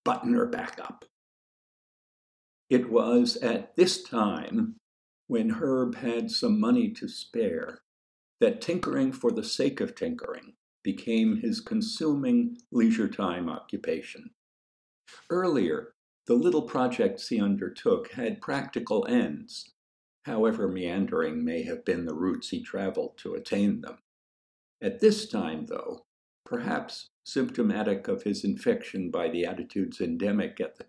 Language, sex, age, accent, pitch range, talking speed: English, male, 60-79, American, 210-245 Hz, 125 wpm